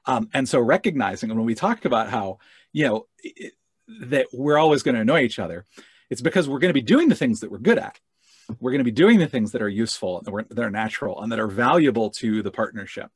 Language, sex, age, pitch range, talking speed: English, male, 40-59, 105-155 Hz, 255 wpm